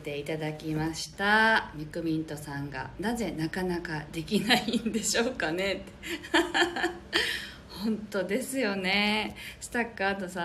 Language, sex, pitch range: Japanese, female, 150-215 Hz